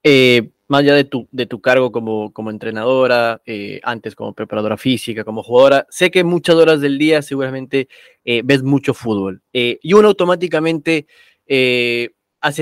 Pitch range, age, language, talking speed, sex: 120-150 Hz, 20-39, Spanish, 165 wpm, male